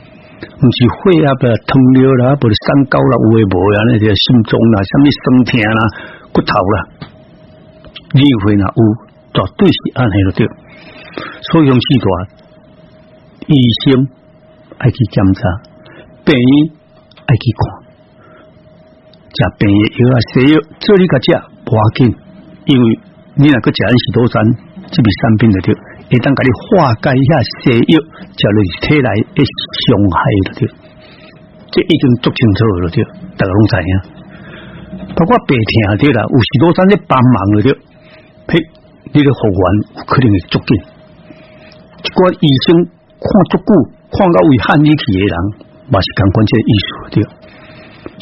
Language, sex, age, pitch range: Chinese, male, 60-79, 110-150 Hz